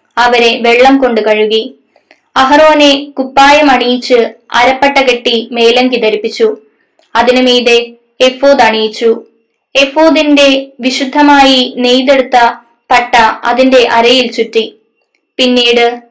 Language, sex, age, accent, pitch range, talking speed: Malayalam, female, 20-39, native, 235-270 Hz, 85 wpm